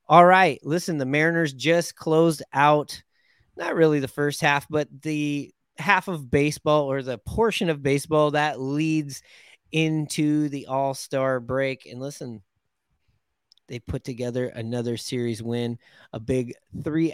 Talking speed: 140 wpm